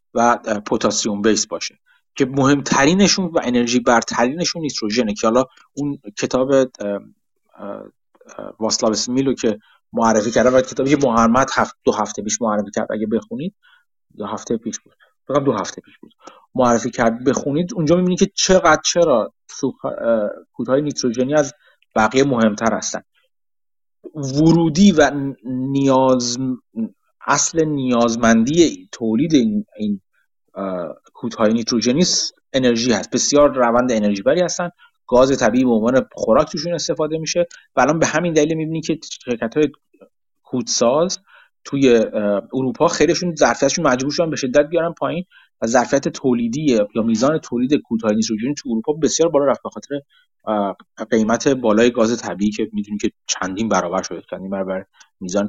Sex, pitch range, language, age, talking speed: male, 115-160 Hz, Persian, 30-49, 130 wpm